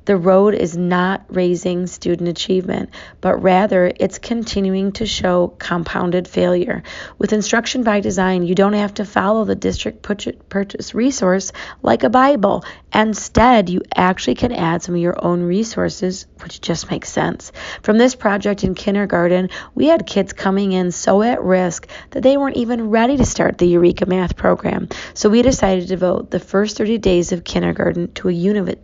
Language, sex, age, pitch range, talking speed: English, female, 40-59, 180-215 Hz, 175 wpm